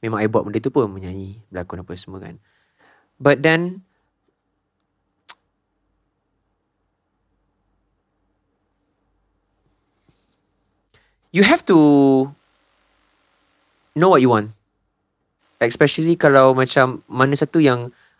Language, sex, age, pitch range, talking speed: Malay, male, 20-39, 110-140 Hz, 85 wpm